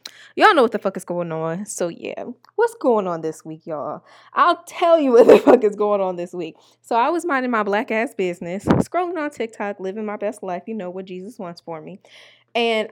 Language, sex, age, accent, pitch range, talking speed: English, female, 20-39, American, 170-225 Hz, 230 wpm